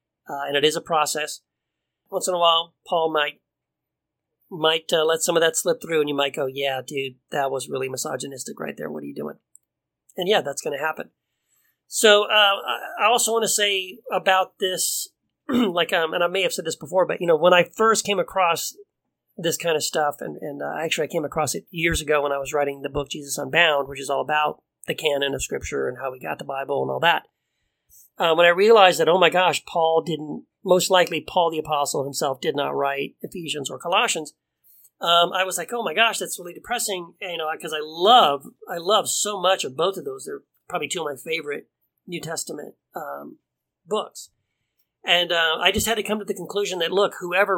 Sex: male